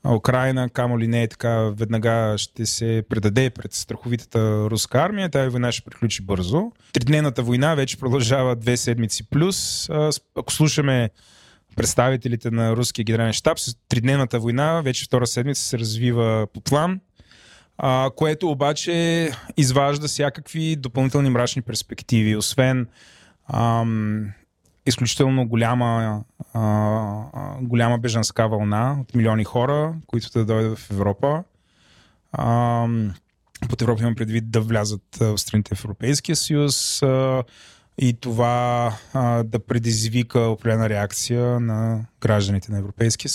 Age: 20-39